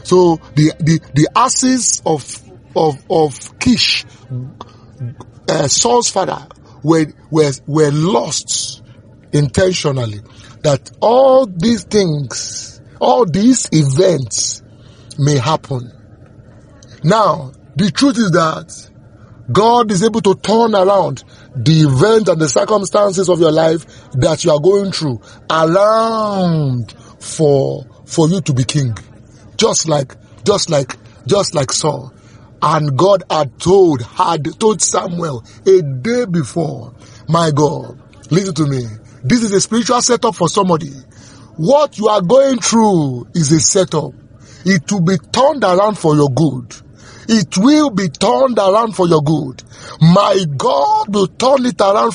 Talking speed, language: 135 wpm, English